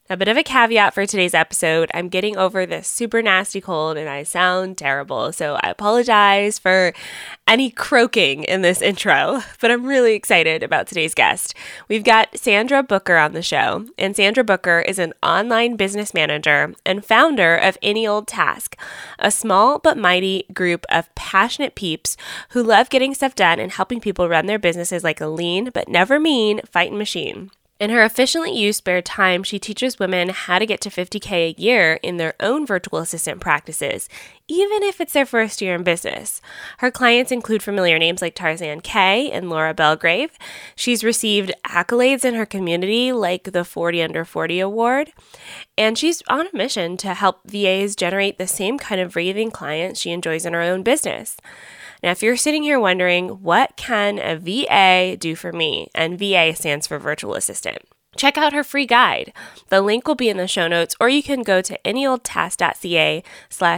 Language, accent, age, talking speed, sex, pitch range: English, American, 20-39, 185 wpm, female, 175-230 Hz